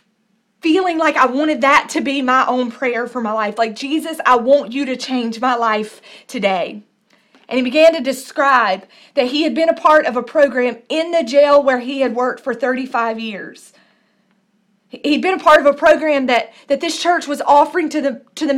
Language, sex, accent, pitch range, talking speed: English, female, American, 230-290 Hz, 205 wpm